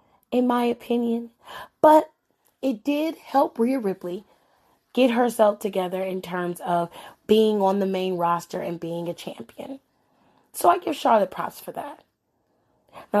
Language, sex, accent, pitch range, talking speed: English, female, American, 180-240 Hz, 145 wpm